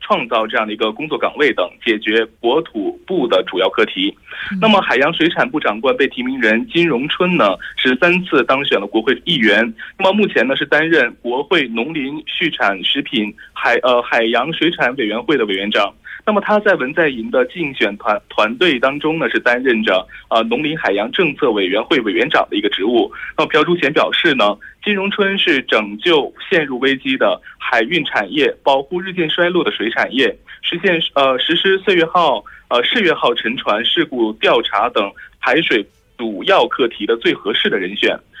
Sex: male